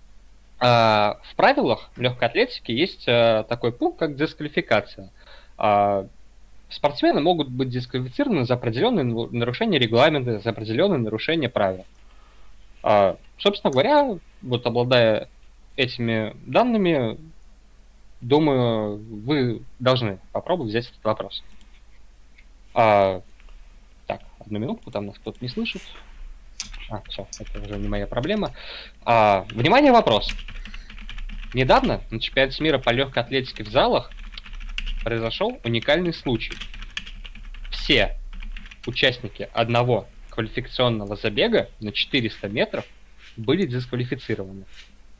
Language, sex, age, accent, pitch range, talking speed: Russian, male, 20-39, native, 105-125 Hz, 105 wpm